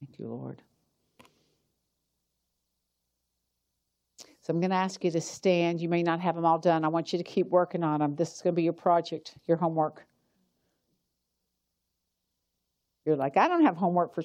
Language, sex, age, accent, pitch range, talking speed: English, female, 60-79, American, 145-180 Hz, 175 wpm